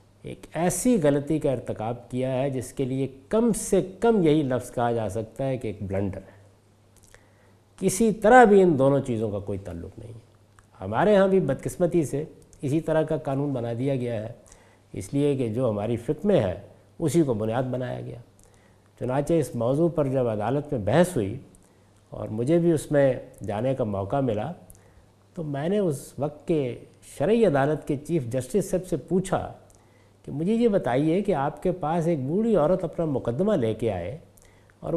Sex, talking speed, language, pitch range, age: male, 185 wpm, Urdu, 105-160 Hz, 50-69